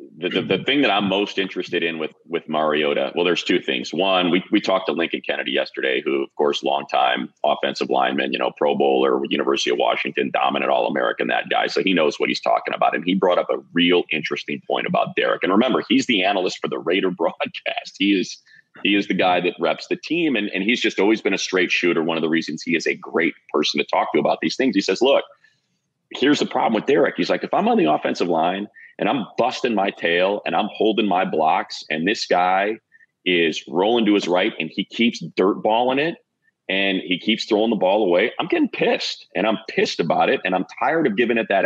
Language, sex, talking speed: English, male, 240 wpm